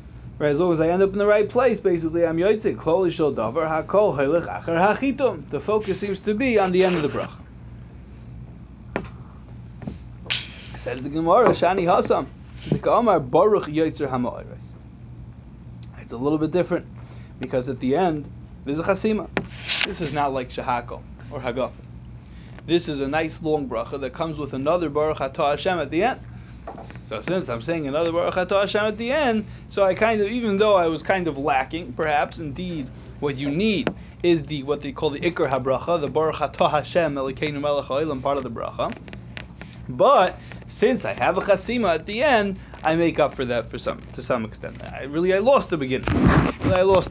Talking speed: 165 wpm